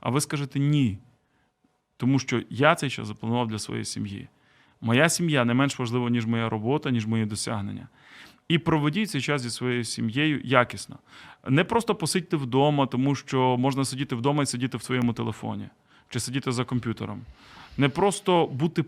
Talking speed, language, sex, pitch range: 170 wpm, Ukrainian, male, 120-150 Hz